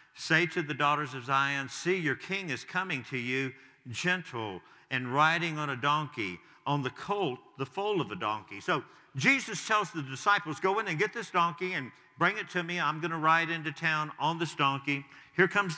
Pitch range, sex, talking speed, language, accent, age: 130-160 Hz, male, 205 wpm, English, American, 50-69